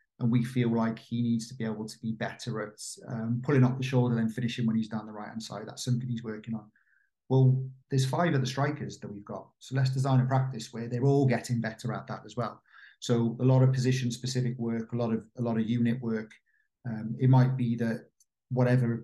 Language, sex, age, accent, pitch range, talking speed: English, male, 40-59, British, 115-130 Hz, 240 wpm